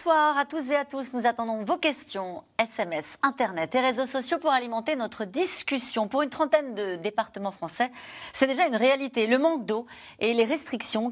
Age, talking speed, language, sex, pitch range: 40-59, 190 wpm, French, female, 205-280 Hz